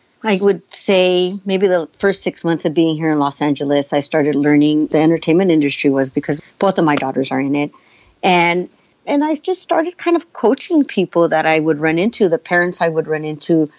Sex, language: female, English